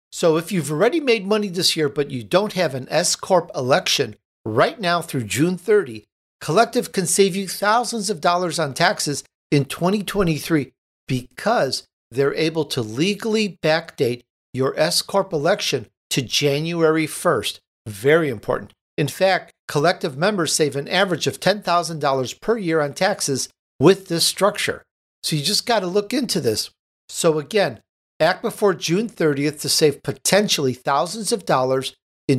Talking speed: 150 wpm